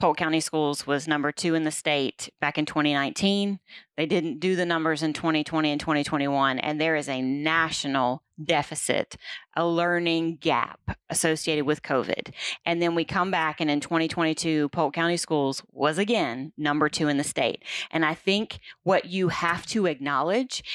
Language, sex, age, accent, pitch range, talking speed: English, female, 30-49, American, 155-180 Hz, 170 wpm